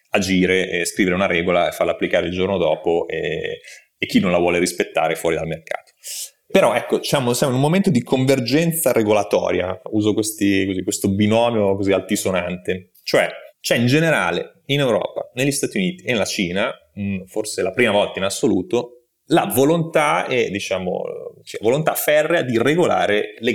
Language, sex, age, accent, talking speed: Italian, male, 30-49, native, 170 wpm